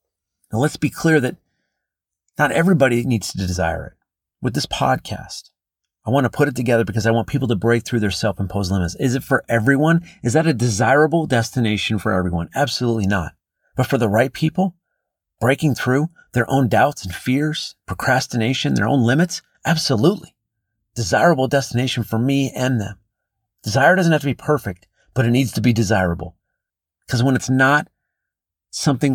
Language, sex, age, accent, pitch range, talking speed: English, male, 40-59, American, 105-140 Hz, 170 wpm